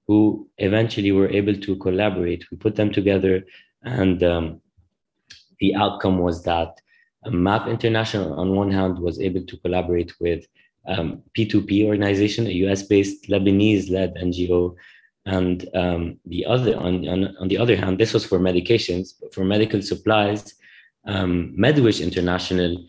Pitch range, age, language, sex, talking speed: 90-100 Hz, 20-39, English, male, 145 wpm